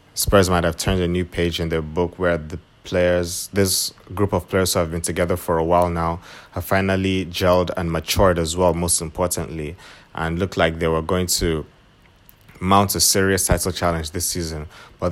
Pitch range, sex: 85-95 Hz, male